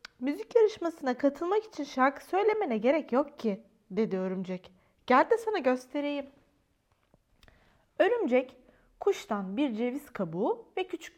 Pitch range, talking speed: 205-310 Hz, 120 wpm